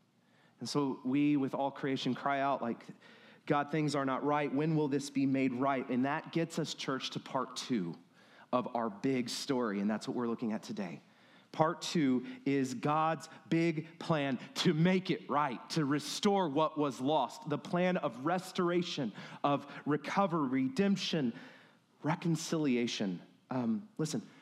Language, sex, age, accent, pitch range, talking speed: English, male, 30-49, American, 135-175 Hz, 155 wpm